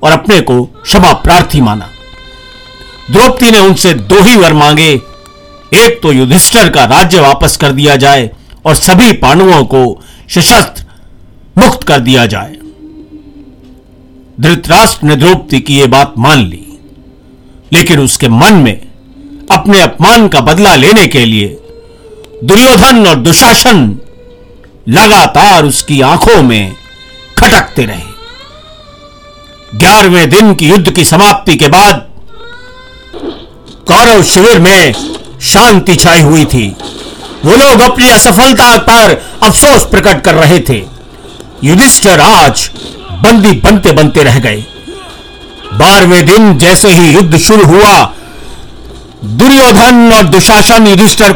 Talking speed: 120 wpm